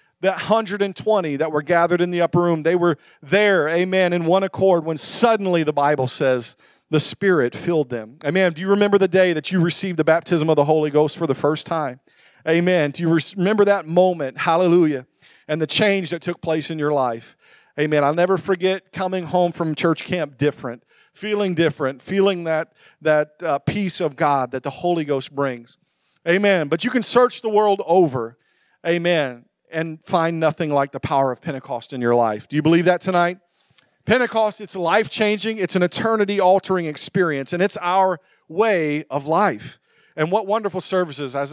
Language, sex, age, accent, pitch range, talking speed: English, male, 40-59, American, 150-190 Hz, 185 wpm